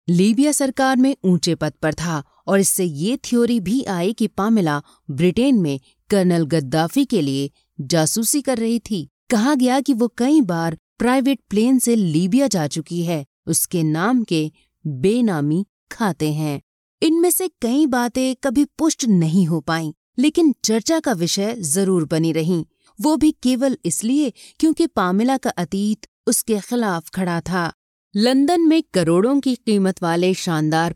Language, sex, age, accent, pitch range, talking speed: Hindi, female, 30-49, native, 165-245 Hz, 155 wpm